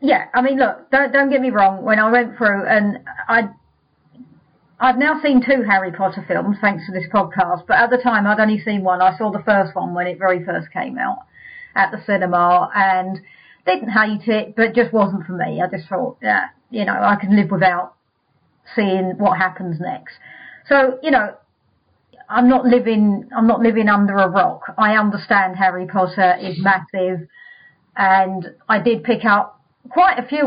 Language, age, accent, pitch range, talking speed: English, 40-59, British, 190-245 Hz, 190 wpm